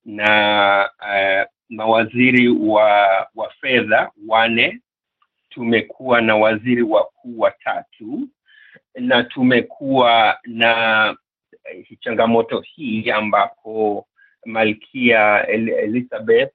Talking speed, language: 100 wpm, Swahili